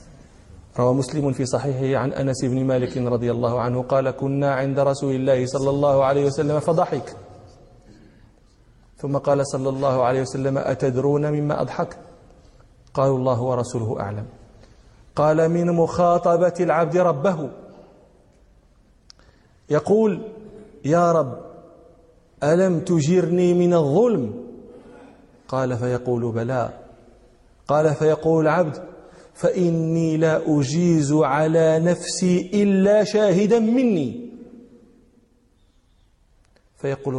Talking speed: 100 wpm